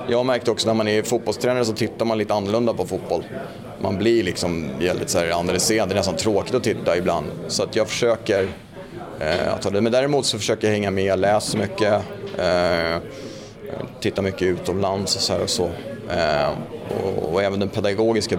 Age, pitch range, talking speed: 30-49, 90-110 Hz, 190 wpm